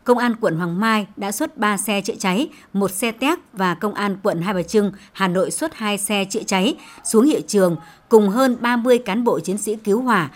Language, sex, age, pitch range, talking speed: Vietnamese, male, 60-79, 185-230 Hz, 230 wpm